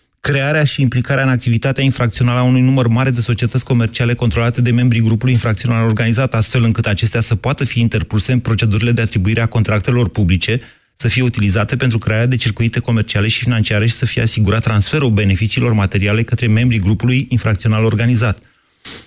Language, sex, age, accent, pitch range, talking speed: Romanian, male, 30-49, native, 110-130 Hz, 175 wpm